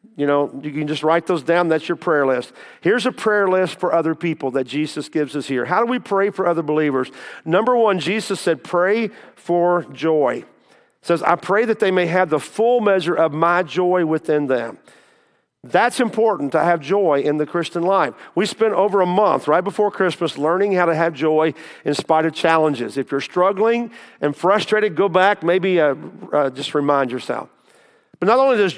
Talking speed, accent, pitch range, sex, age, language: 200 wpm, American, 155-200 Hz, male, 50-69, English